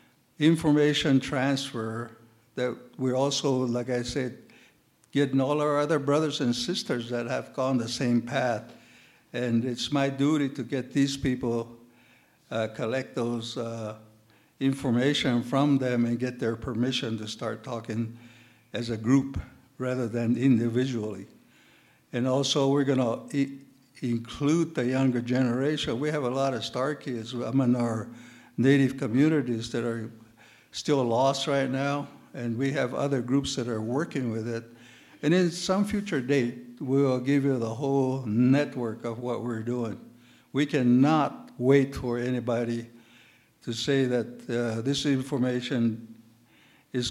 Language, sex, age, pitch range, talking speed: English, male, 60-79, 120-140 Hz, 140 wpm